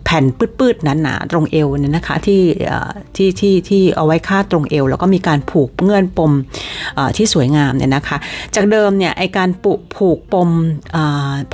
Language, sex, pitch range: Thai, female, 150-205 Hz